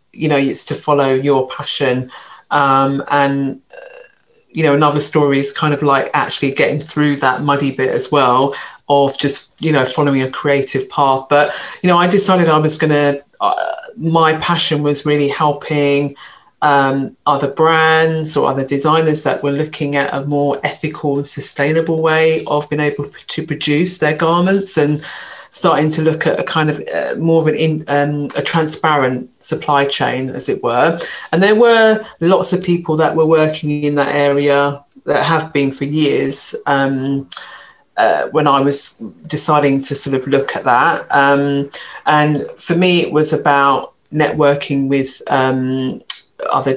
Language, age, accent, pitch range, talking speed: English, 40-59, British, 140-155 Hz, 165 wpm